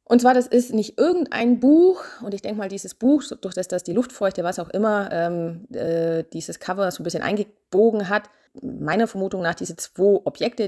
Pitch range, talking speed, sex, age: 160-215 Hz, 200 wpm, female, 30-49